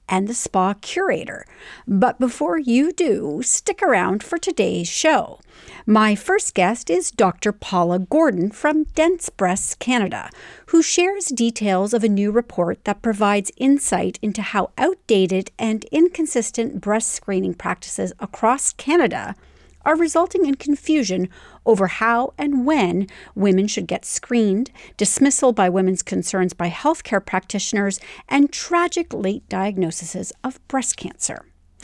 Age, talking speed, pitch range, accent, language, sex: 50-69, 130 wpm, 190-280 Hz, American, English, female